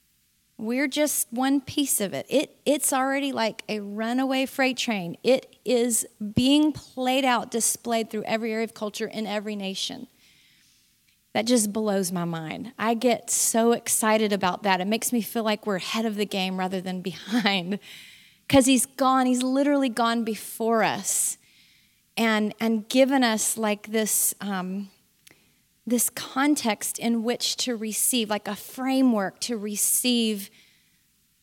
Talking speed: 150 wpm